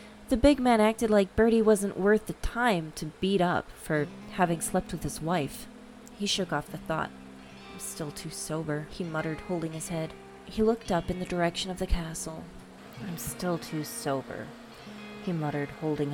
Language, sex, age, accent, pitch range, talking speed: English, female, 30-49, American, 150-205 Hz, 180 wpm